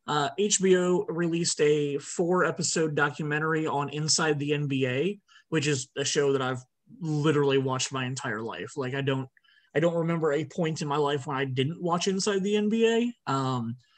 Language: English